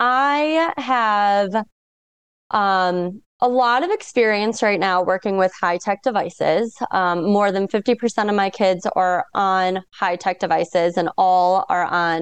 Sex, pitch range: female, 185-255 Hz